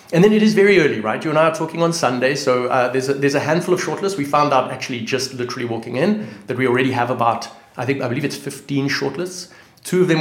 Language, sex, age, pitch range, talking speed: English, male, 30-49, 115-145 Hz, 265 wpm